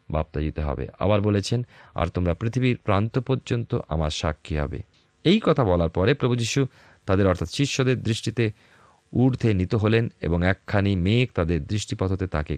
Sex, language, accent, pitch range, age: male, Bengali, native, 85-120 Hz, 40-59